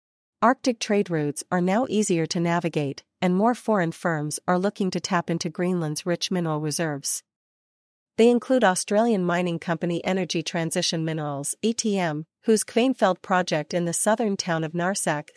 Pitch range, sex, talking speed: 165-200 Hz, female, 150 wpm